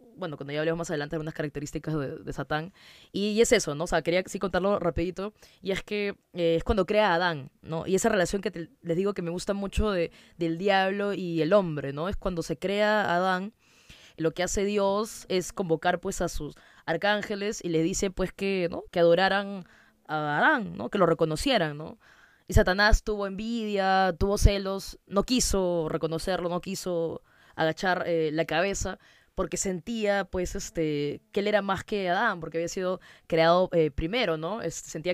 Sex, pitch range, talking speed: female, 165-200 Hz, 200 wpm